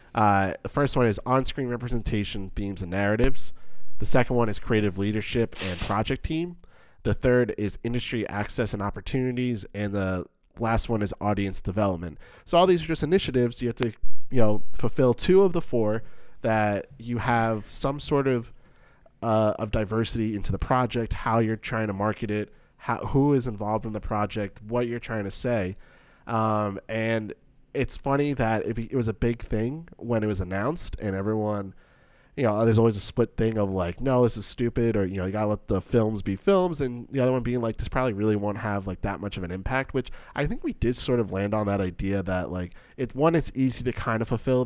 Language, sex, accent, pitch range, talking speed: English, male, American, 105-125 Hz, 210 wpm